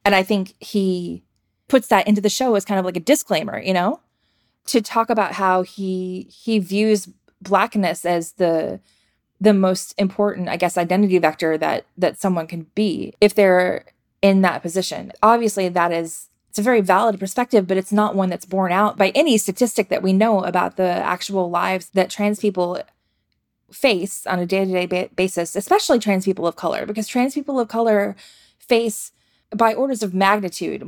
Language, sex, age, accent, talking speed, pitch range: English, female, 20-39, American, 185 wpm, 180-215 Hz